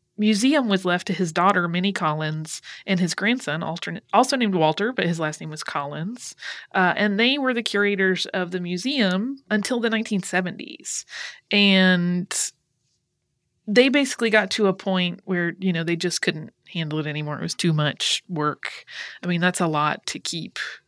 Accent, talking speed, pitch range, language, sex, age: American, 170 wpm, 175-210 Hz, English, female, 30-49